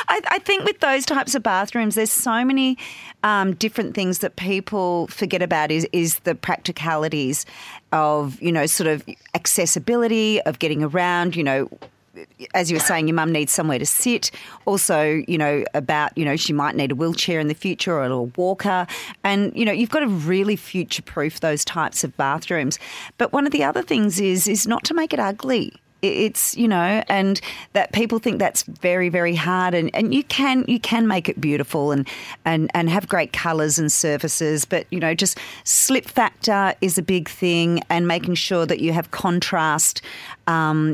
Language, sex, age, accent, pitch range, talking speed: English, female, 40-59, Australian, 155-200 Hz, 190 wpm